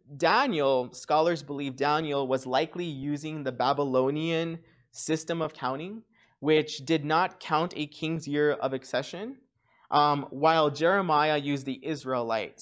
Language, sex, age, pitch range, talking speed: English, male, 20-39, 120-160 Hz, 130 wpm